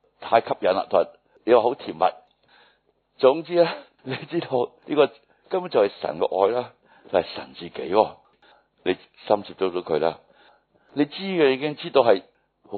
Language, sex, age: Chinese, male, 60-79